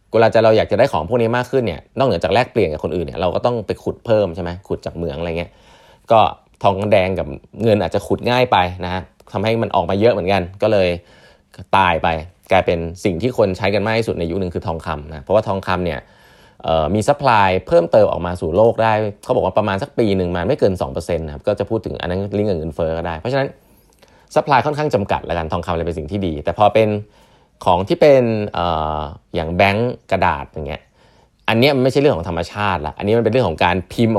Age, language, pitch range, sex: 20-39, Thai, 85-110 Hz, male